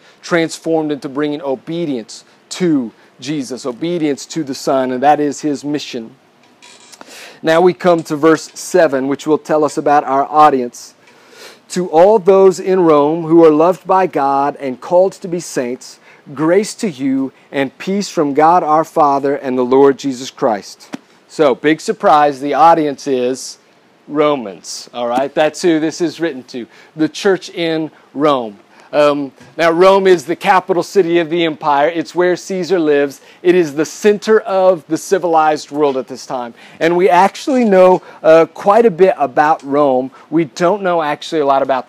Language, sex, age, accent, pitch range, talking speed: English, male, 40-59, American, 140-180 Hz, 170 wpm